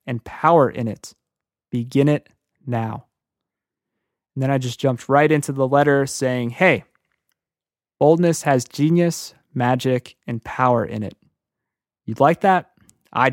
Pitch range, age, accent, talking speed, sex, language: 120-145 Hz, 20-39, American, 135 wpm, male, English